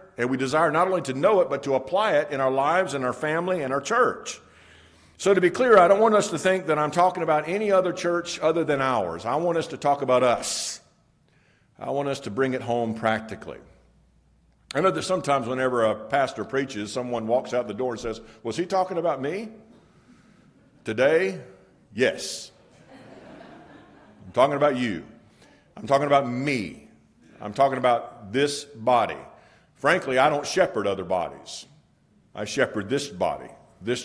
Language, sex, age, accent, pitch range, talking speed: English, male, 50-69, American, 120-165 Hz, 180 wpm